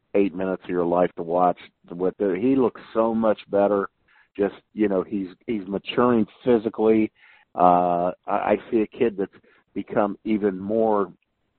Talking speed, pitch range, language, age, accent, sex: 155 wpm, 90-110 Hz, English, 50-69, American, male